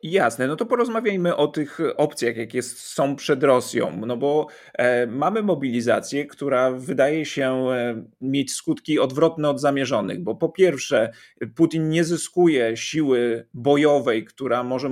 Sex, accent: male, native